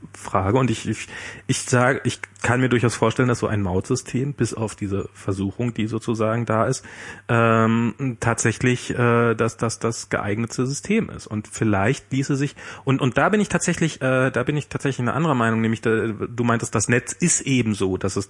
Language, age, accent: German, 40-59, German